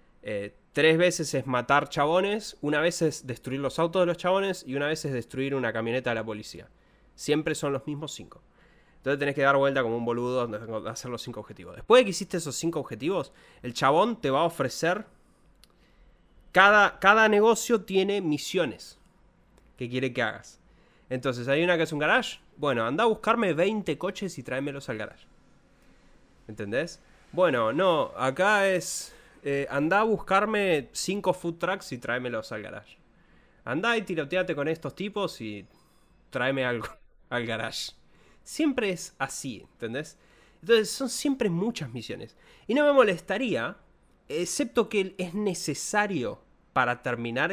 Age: 20-39